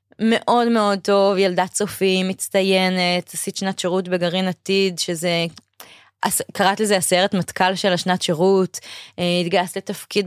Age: 20-39